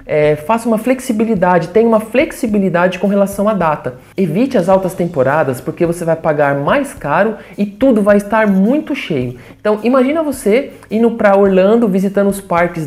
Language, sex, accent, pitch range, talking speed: English, male, Brazilian, 155-210 Hz, 170 wpm